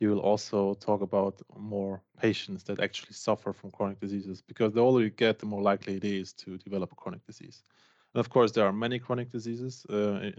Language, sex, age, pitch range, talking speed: English, male, 20-39, 95-110 Hz, 215 wpm